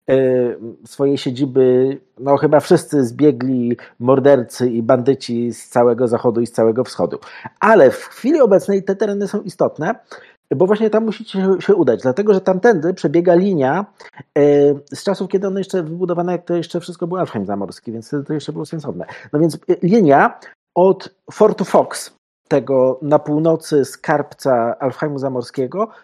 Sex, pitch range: male, 130-185 Hz